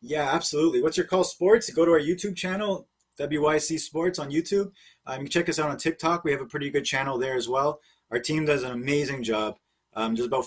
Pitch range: 145-175 Hz